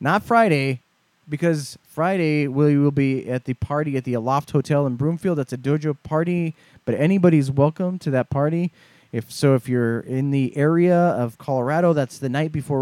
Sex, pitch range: male, 145-195 Hz